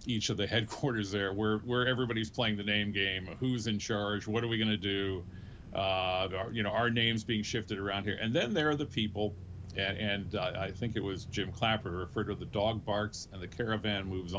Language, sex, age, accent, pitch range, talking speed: English, male, 40-59, American, 95-110 Hz, 225 wpm